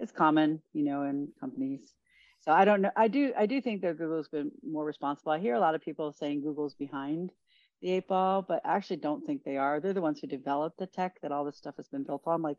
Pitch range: 145-180 Hz